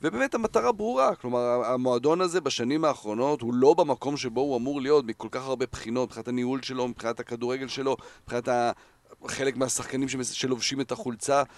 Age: 40-59